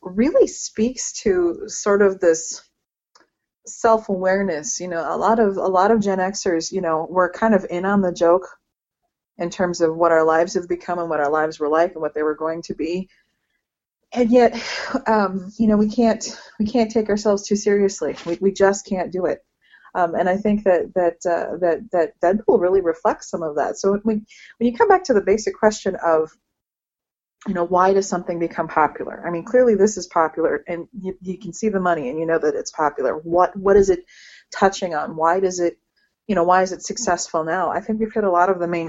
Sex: female